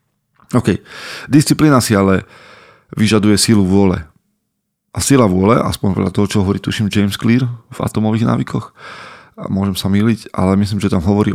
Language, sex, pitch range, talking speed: Slovak, male, 100-115 Hz, 160 wpm